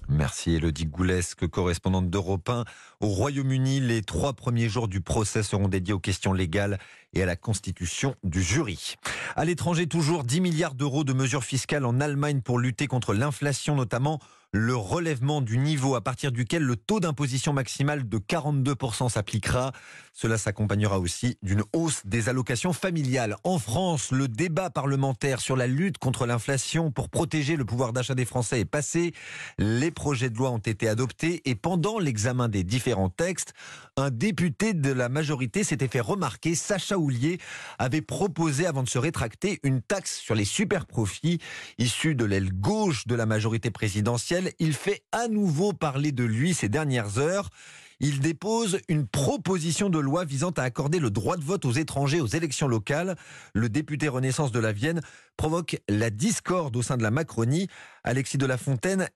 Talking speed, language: 175 wpm, French